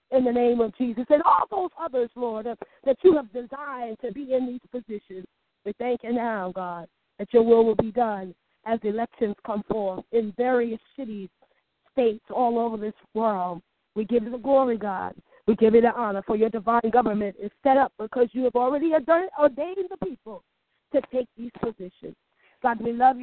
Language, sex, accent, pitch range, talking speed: English, female, American, 220-270 Hz, 195 wpm